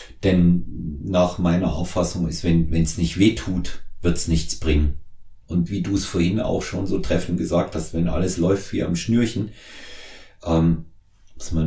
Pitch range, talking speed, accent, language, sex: 80-95 Hz, 170 wpm, German, German, male